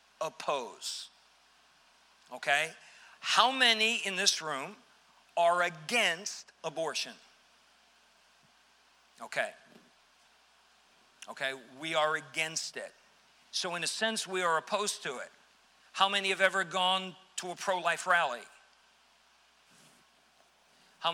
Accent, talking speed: American, 100 wpm